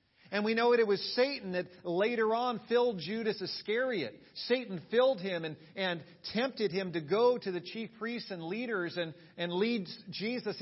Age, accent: 50-69, American